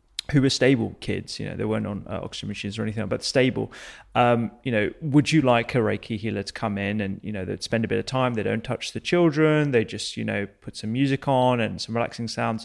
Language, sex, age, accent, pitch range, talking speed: English, male, 30-49, British, 115-155 Hz, 255 wpm